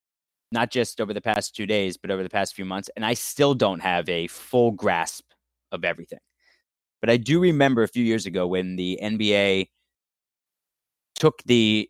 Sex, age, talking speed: male, 30-49, 180 wpm